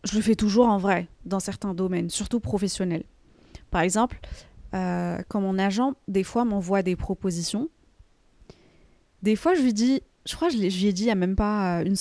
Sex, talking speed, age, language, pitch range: female, 200 wpm, 20-39, French, 185-245 Hz